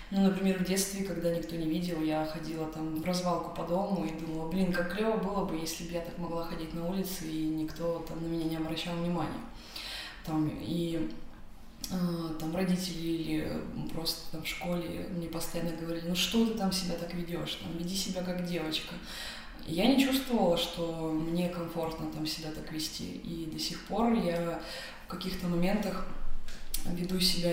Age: 20-39